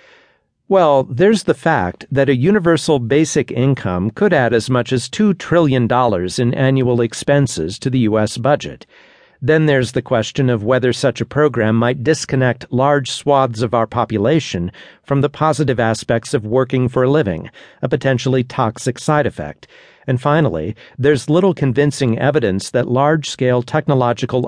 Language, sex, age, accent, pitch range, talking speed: English, male, 50-69, American, 115-145 Hz, 150 wpm